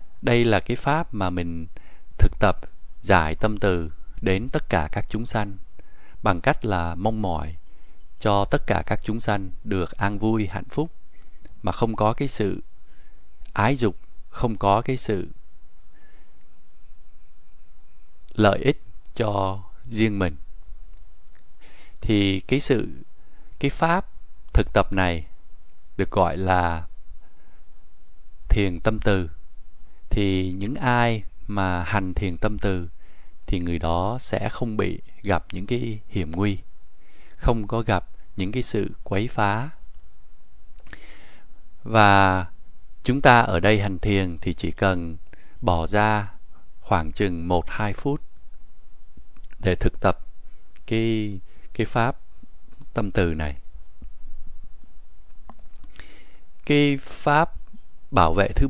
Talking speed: 125 wpm